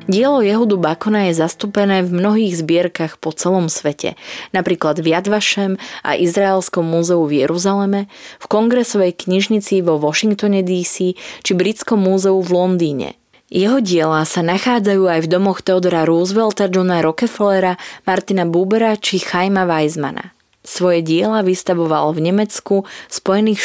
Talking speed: 130 wpm